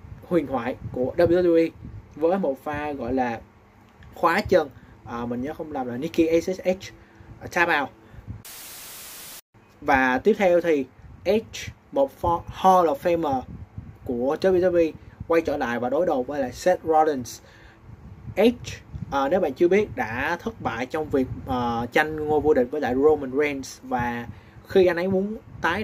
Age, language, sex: 20-39, Vietnamese, male